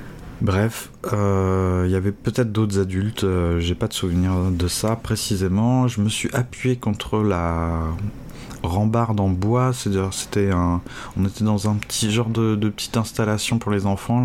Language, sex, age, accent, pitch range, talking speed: French, male, 30-49, French, 95-120 Hz, 175 wpm